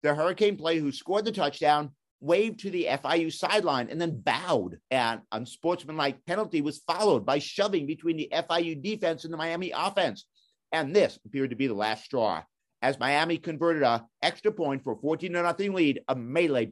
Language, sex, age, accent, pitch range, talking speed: English, male, 50-69, American, 135-175 Hz, 185 wpm